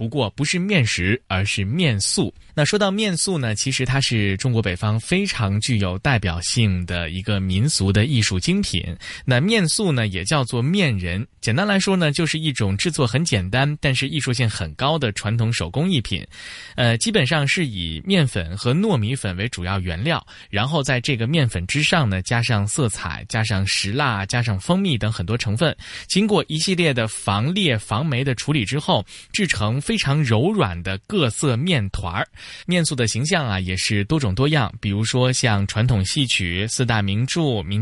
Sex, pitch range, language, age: male, 100-145 Hz, Chinese, 20-39